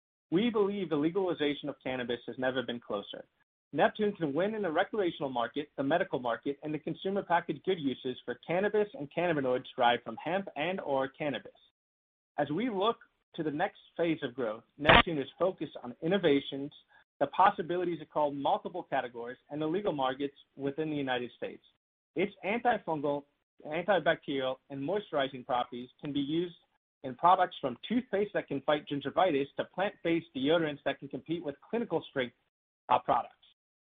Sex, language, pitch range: male, English, 140-175 Hz